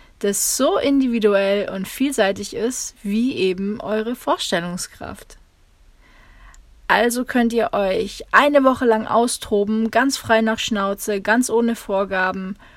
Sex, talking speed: female, 115 wpm